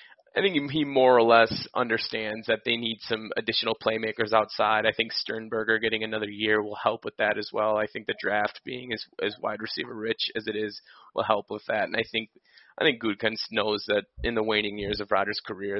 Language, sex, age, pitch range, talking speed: English, male, 20-39, 105-115 Hz, 220 wpm